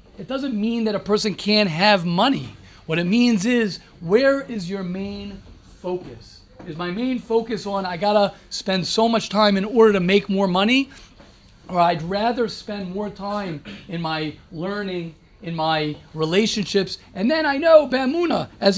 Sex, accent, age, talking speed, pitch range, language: male, American, 40-59, 170 wpm, 180-245 Hz, English